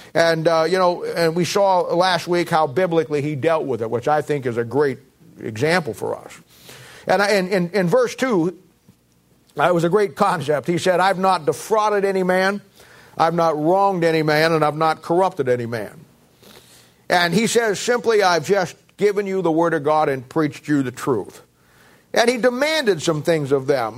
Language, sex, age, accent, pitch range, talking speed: English, male, 50-69, American, 140-185 Hz, 200 wpm